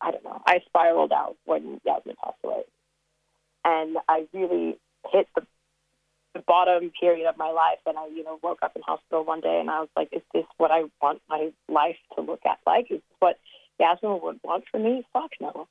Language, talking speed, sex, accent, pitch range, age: English, 220 wpm, female, American, 160-180 Hz, 20-39